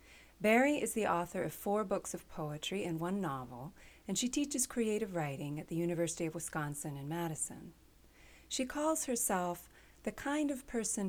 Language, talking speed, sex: English, 170 wpm, female